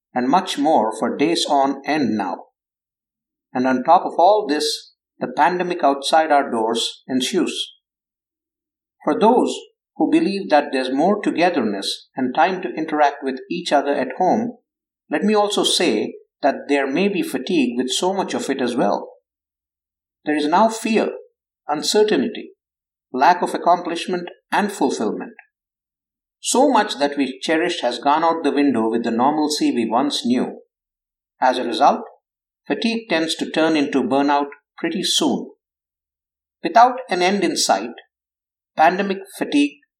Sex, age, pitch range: male, 50-69, 135-225 Hz